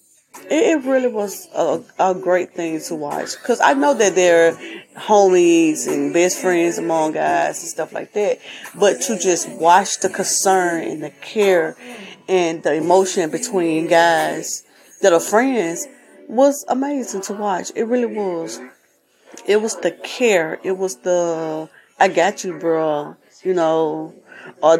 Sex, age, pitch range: female, 20-39, 165-215 Hz